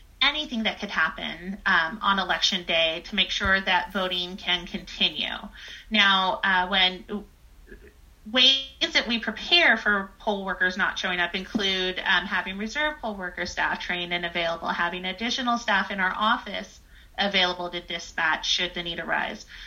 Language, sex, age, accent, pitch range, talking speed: English, female, 30-49, American, 185-230 Hz, 155 wpm